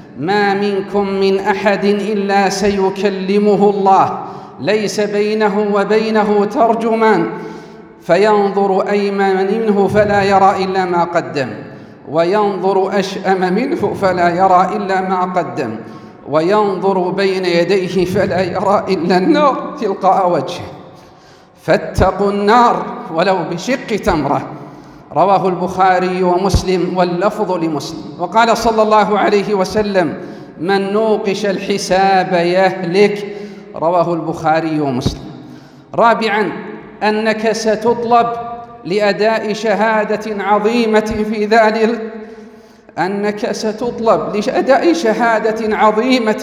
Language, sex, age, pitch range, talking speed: Arabic, male, 40-59, 185-215 Hz, 85 wpm